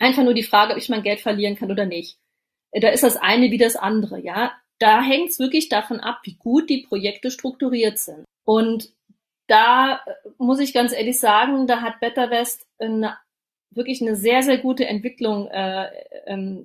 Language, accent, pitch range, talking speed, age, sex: German, German, 205-250 Hz, 180 wpm, 30-49, female